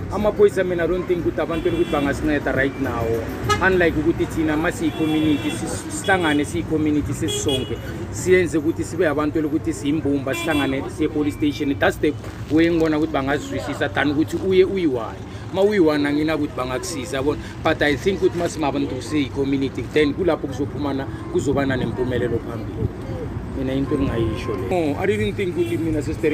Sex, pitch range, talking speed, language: male, 120-160 Hz, 115 wpm, English